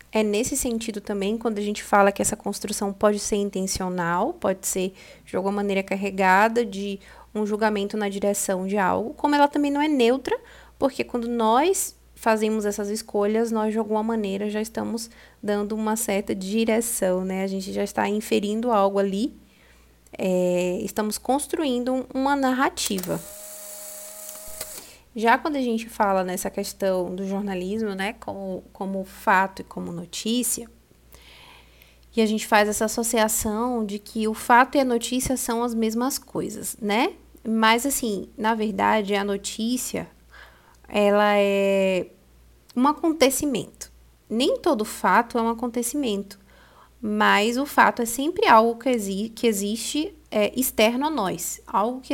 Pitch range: 200-245 Hz